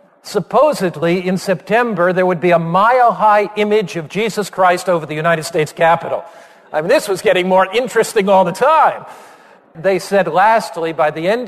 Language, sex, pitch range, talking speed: English, male, 160-205 Hz, 175 wpm